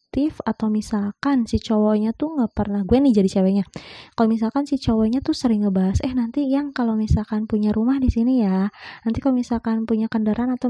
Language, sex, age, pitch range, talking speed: Indonesian, female, 20-39, 205-250 Hz, 190 wpm